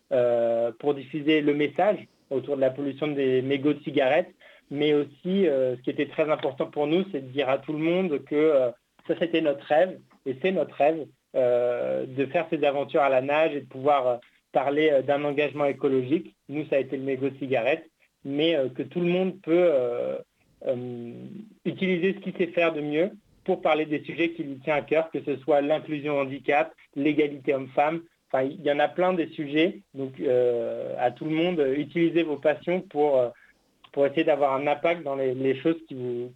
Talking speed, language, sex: 210 wpm, French, male